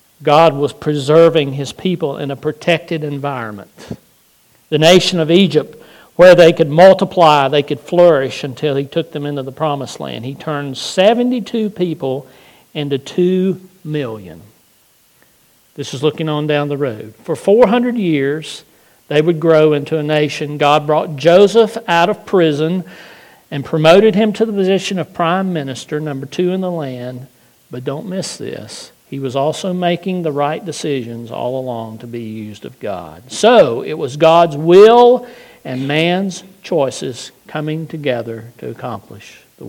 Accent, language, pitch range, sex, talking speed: American, English, 135-185 Hz, male, 155 wpm